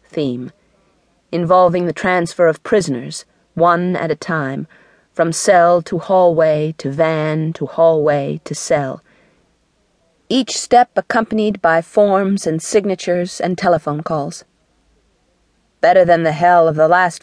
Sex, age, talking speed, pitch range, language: female, 40-59, 130 wpm, 160-190 Hz, English